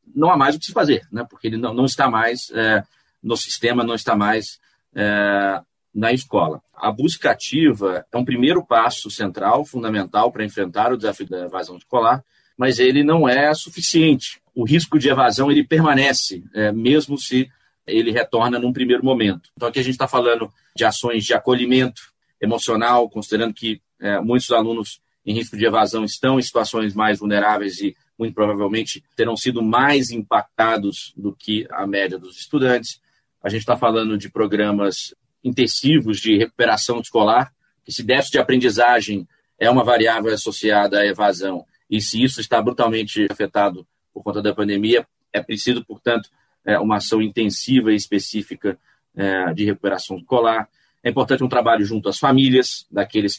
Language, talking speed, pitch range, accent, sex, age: Portuguese, 160 wpm, 105-125 Hz, Brazilian, male, 40-59